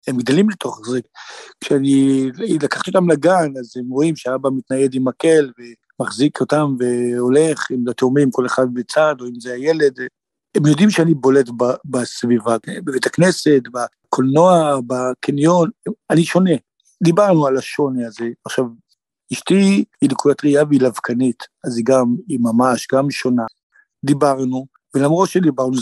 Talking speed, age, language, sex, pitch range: 140 wpm, 60-79, Hebrew, male, 130-165 Hz